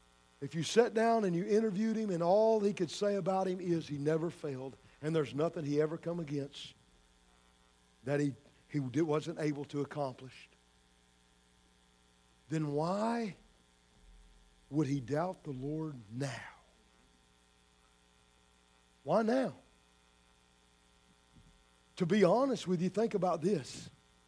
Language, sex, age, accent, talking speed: English, male, 50-69, American, 125 wpm